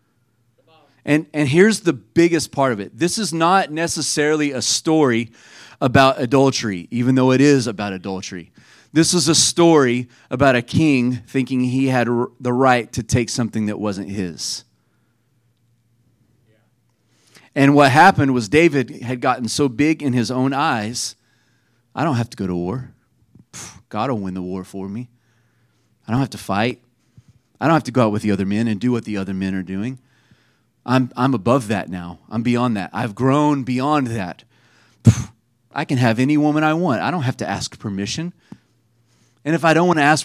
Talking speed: 180 wpm